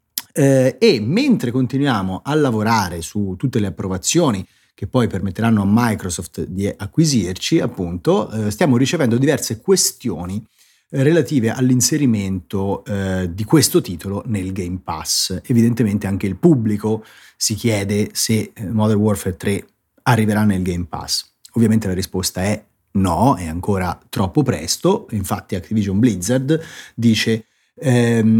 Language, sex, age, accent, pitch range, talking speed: Italian, male, 30-49, native, 100-140 Hz, 125 wpm